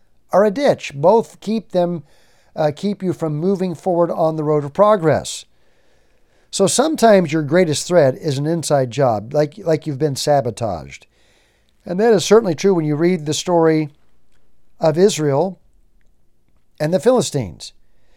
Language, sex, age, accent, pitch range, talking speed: English, male, 50-69, American, 145-180 Hz, 150 wpm